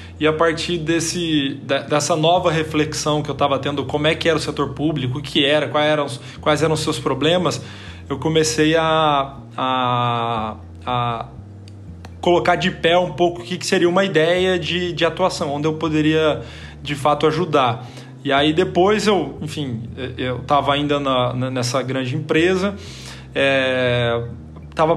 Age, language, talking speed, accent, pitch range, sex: 20-39, Portuguese, 160 wpm, Brazilian, 130-160 Hz, male